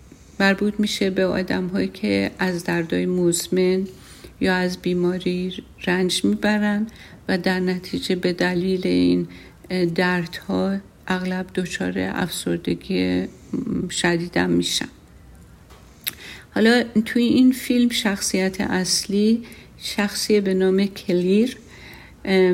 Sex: female